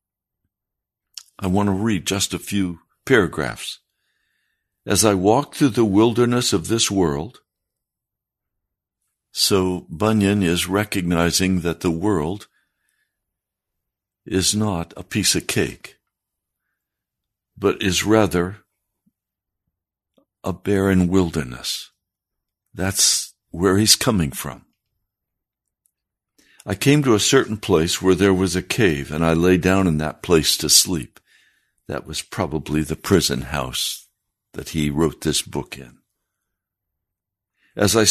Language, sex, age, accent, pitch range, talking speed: English, male, 60-79, American, 85-105 Hz, 120 wpm